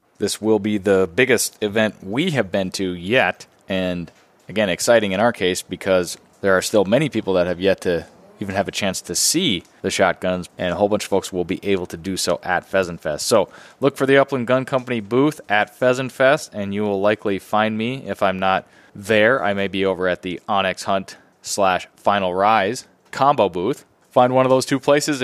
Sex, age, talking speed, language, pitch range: male, 20-39, 215 wpm, English, 95-125 Hz